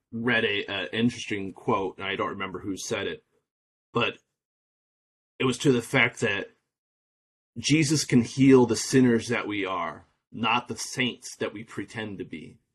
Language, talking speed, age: English, 165 wpm, 30-49